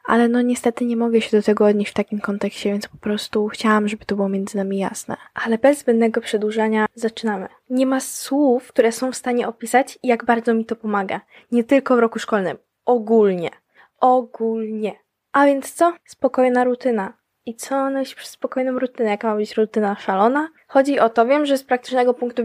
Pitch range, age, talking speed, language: 205-235 Hz, 10-29, 190 wpm, Polish